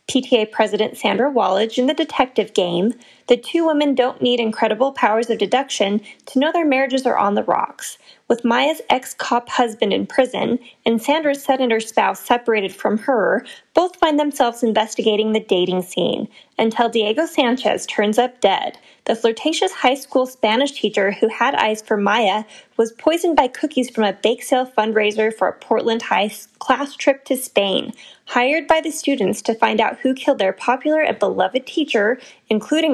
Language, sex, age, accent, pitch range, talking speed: English, female, 10-29, American, 220-290 Hz, 175 wpm